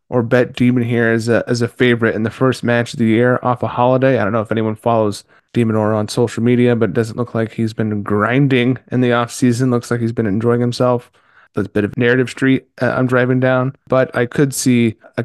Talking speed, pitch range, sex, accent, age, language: 250 wpm, 115-135 Hz, male, American, 30-49, English